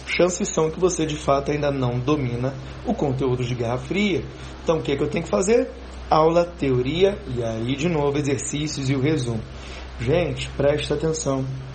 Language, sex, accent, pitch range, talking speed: Portuguese, male, Brazilian, 130-190 Hz, 185 wpm